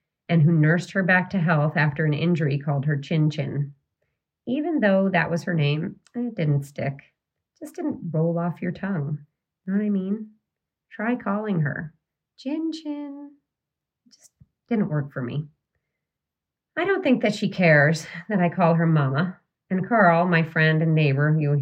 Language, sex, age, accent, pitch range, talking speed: English, female, 40-59, American, 150-195 Hz, 180 wpm